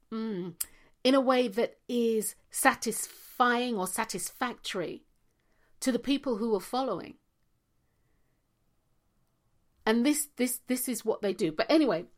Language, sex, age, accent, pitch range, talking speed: English, female, 50-69, British, 190-245 Hz, 125 wpm